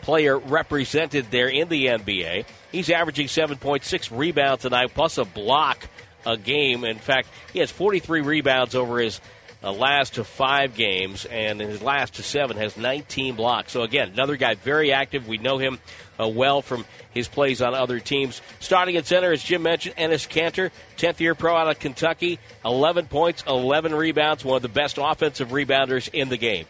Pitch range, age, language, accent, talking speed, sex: 125-155 Hz, 50-69, English, American, 180 wpm, male